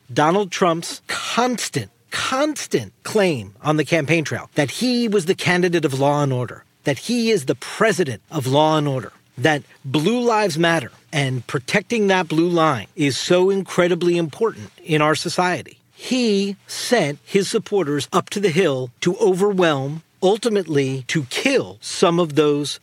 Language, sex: English, male